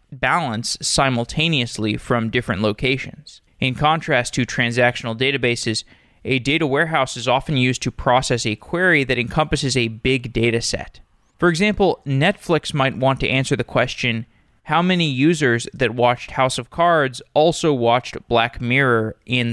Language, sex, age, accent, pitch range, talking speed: English, male, 20-39, American, 120-145 Hz, 150 wpm